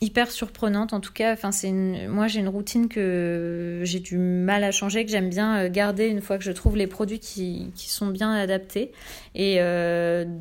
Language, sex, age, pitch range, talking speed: English, female, 20-39, 180-215 Hz, 190 wpm